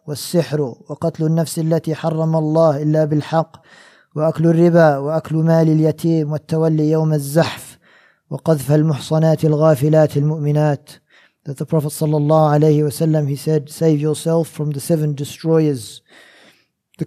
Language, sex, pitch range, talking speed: English, male, 150-165 Hz, 125 wpm